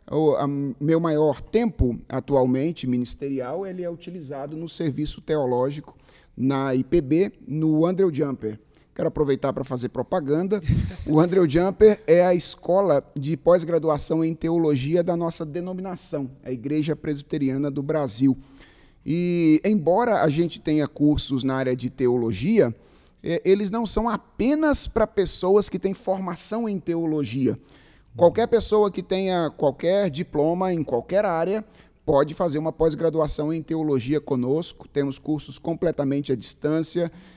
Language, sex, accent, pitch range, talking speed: Portuguese, male, Brazilian, 135-175 Hz, 130 wpm